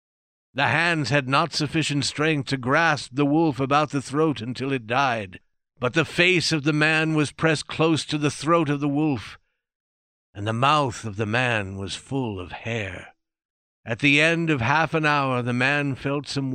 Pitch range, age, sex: 110-150 Hz, 60-79, male